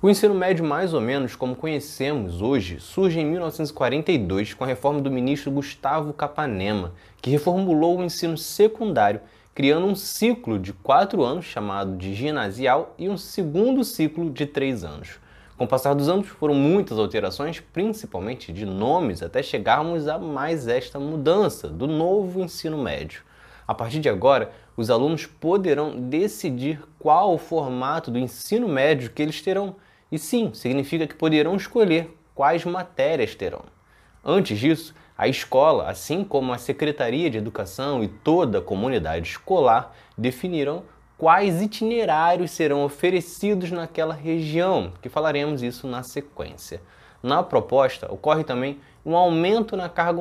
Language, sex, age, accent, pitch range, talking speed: Portuguese, male, 20-39, Brazilian, 135-175 Hz, 145 wpm